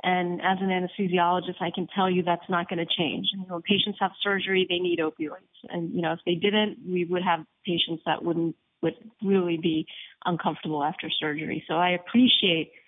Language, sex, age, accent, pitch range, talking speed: English, female, 40-59, American, 175-205 Hz, 190 wpm